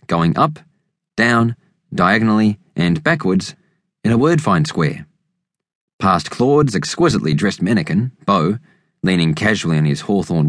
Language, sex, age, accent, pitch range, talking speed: English, male, 30-49, Australian, 120-180 Hz, 115 wpm